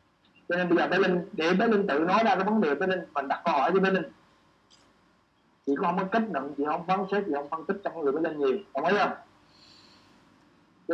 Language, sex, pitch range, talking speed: Vietnamese, male, 165-205 Hz, 250 wpm